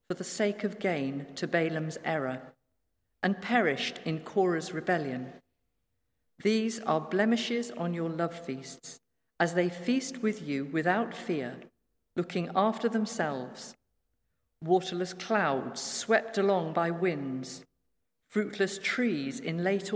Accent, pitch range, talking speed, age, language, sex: British, 150-210 Hz, 120 wpm, 50-69, English, female